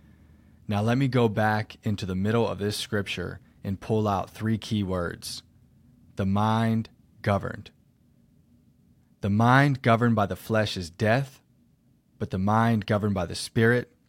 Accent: American